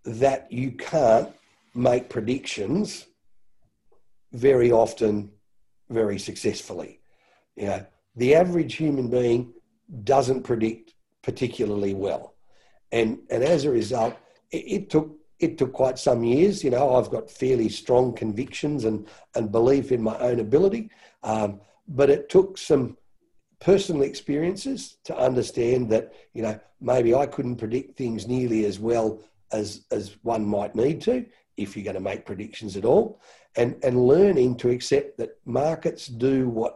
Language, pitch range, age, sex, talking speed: English, 110-140 Hz, 50-69, male, 145 wpm